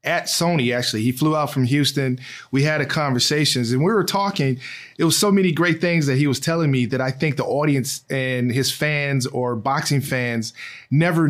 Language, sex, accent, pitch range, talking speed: English, male, American, 130-165 Hz, 205 wpm